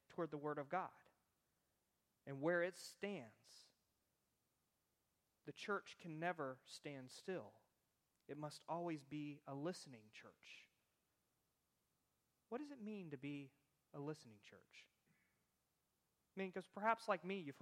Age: 30-49